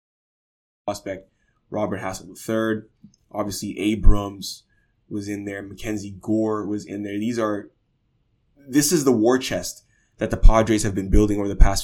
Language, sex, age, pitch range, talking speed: English, male, 20-39, 100-120 Hz, 150 wpm